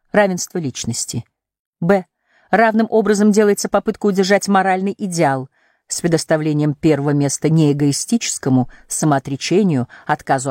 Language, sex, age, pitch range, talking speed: English, female, 40-59, 145-210 Hz, 95 wpm